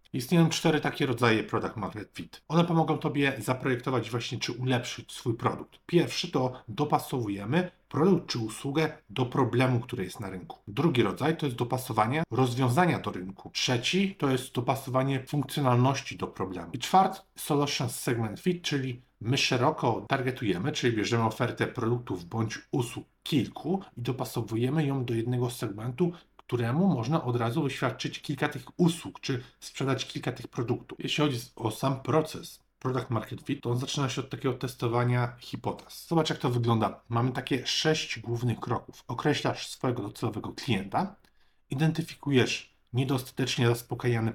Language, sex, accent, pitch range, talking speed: Polish, male, native, 120-150 Hz, 150 wpm